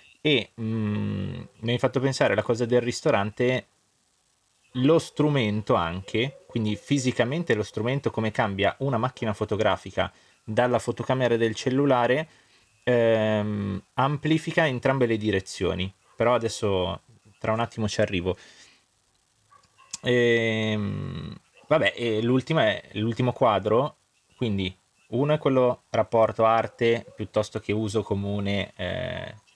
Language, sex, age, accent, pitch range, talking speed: Italian, male, 20-39, native, 100-120 Hz, 110 wpm